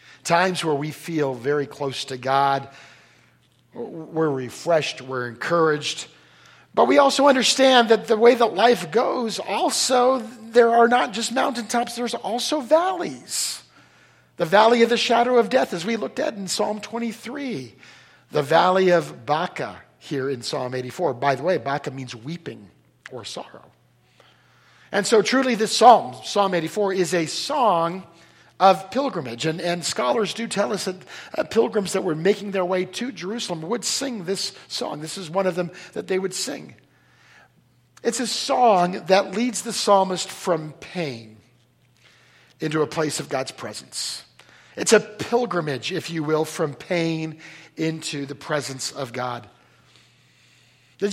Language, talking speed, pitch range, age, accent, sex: English, 155 wpm, 155-235 Hz, 50-69, American, male